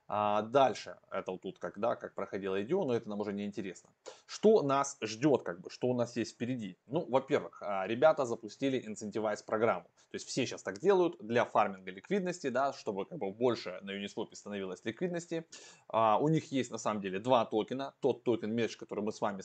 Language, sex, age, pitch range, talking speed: Russian, male, 20-39, 105-135 Hz, 200 wpm